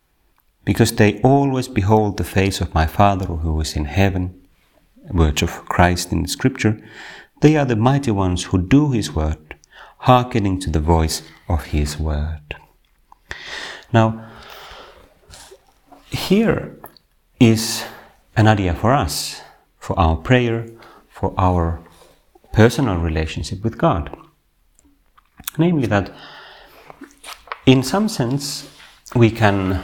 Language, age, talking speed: Finnish, 40-59, 120 wpm